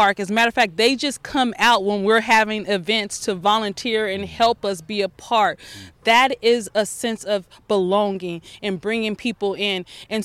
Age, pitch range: 30-49, 205-245 Hz